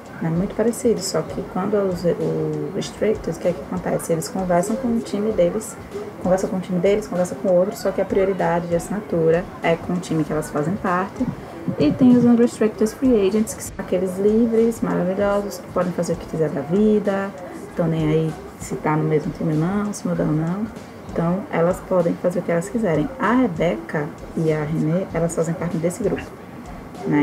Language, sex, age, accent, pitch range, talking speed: Portuguese, female, 20-39, Brazilian, 170-215 Hz, 205 wpm